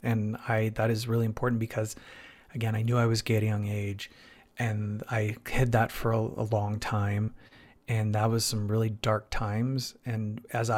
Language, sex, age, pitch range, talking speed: English, male, 30-49, 110-125 Hz, 195 wpm